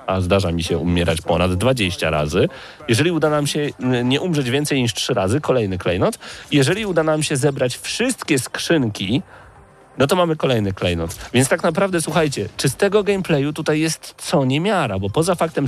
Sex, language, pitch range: male, Polish, 110-155 Hz